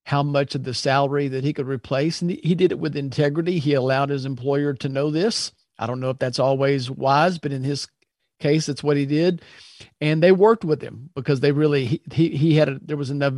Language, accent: English, American